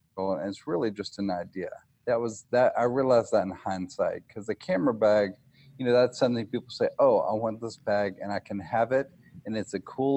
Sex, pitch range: male, 95-115 Hz